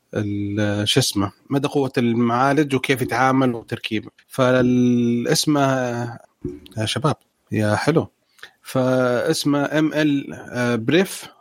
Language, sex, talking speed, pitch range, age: Arabic, male, 95 wpm, 125-160 Hz, 30-49